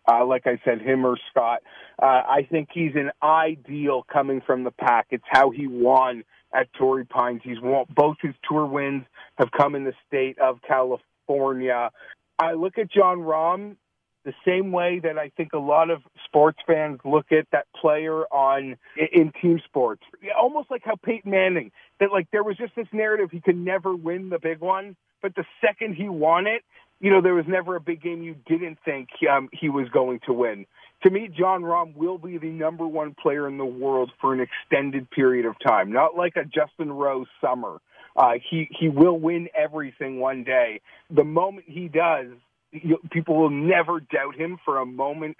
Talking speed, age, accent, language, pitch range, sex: 200 wpm, 40-59, American, English, 130-170 Hz, male